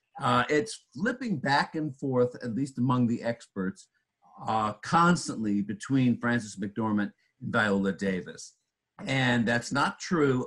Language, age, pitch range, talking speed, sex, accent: English, 50-69, 100-130 Hz, 130 wpm, male, American